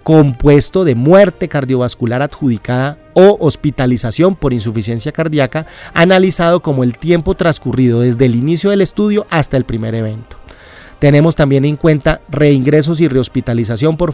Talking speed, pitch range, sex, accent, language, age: 135 wpm, 130-165 Hz, male, Colombian, Spanish, 30-49